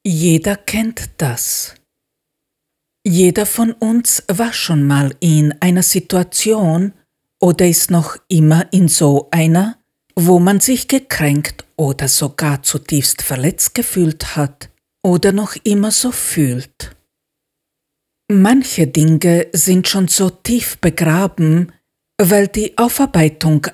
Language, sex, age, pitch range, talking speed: German, female, 50-69, 155-200 Hz, 110 wpm